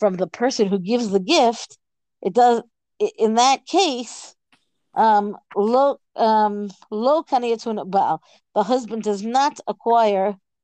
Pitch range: 195-250 Hz